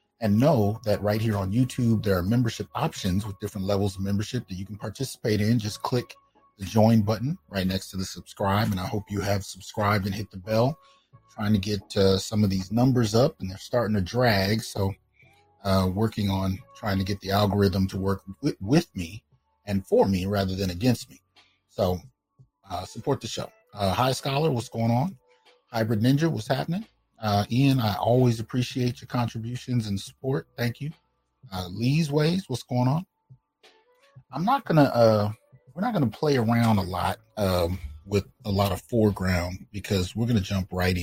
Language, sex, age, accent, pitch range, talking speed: English, male, 30-49, American, 95-125 Hz, 195 wpm